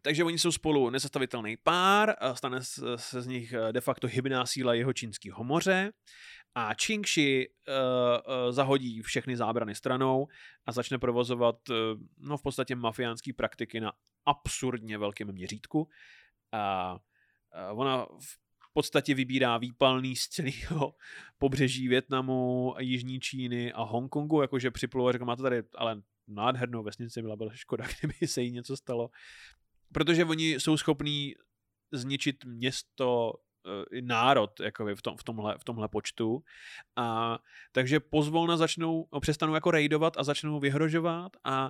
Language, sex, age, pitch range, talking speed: Czech, male, 20-39, 120-145 Hz, 130 wpm